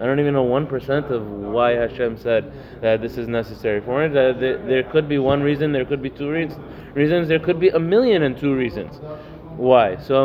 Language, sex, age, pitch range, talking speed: English, male, 20-39, 130-165 Hz, 205 wpm